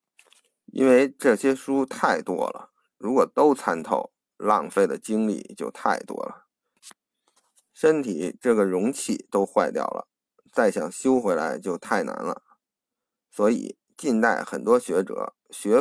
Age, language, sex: 50-69, Chinese, male